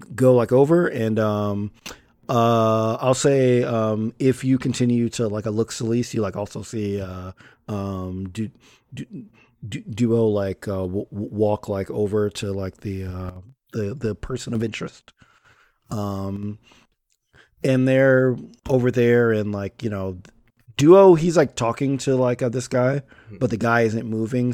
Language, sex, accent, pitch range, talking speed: English, male, American, 100-125 Hz, 160 wpm